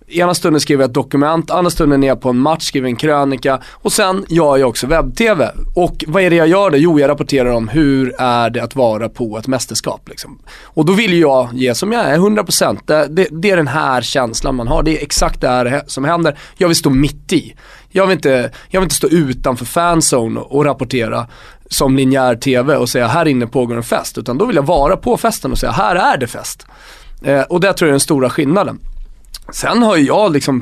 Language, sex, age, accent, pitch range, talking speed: Swedish, male, 20-39, native, 125-160 Hz, 230 wpm